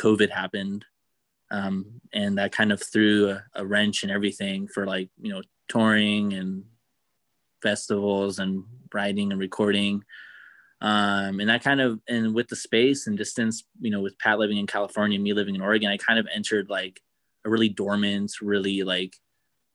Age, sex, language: 20-39, male, English